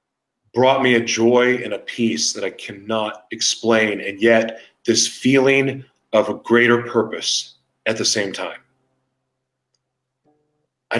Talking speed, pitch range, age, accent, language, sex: 130 wpm, 115-140 Hz, 40-59, American, English, male